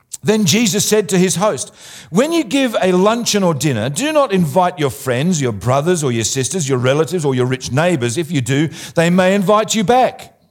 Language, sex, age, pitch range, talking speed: English, male, 50-69, 140-215 Hz, 210 wpm